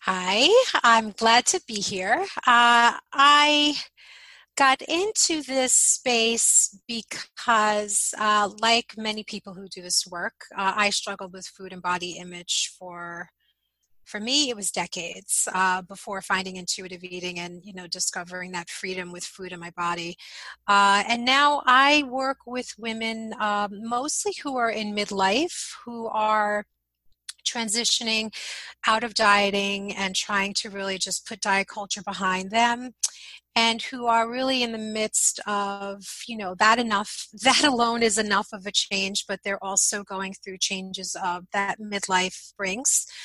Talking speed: 150 wpm